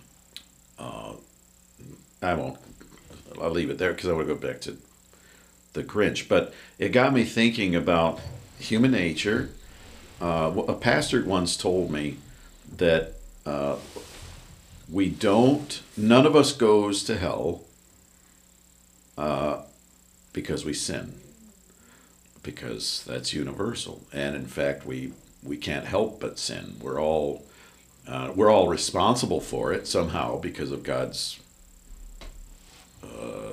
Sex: male